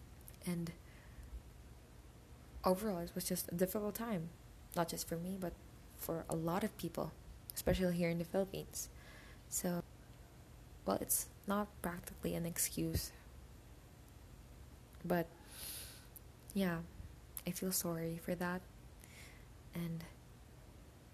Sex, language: female, Korean